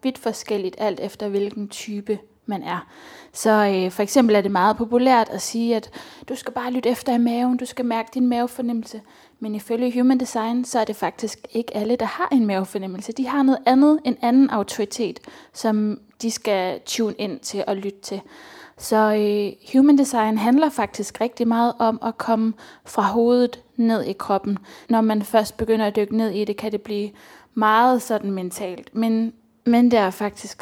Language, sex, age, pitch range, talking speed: English, female, 20-39, 210-245 Hz, 180 wpm